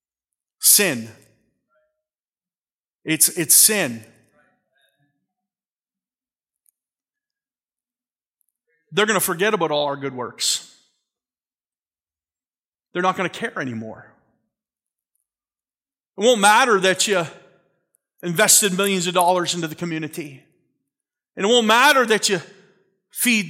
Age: 40-59